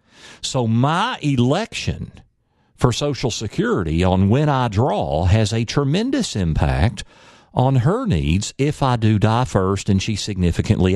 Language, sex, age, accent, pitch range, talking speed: English, male, 50-69, American, 95-125 Hz, 135 wpm